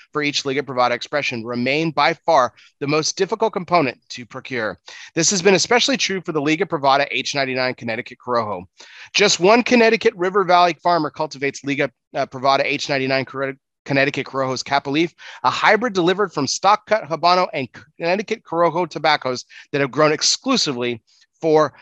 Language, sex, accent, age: English, male, American, 30-49